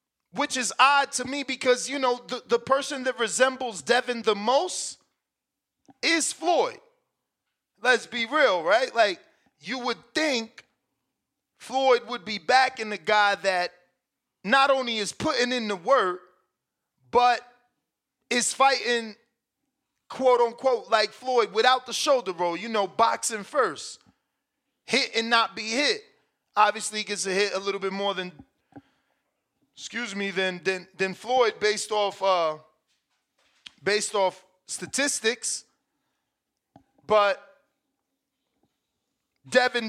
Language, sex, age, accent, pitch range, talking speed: English, male, 30-49, American, 200-255 Hz, 125 wpm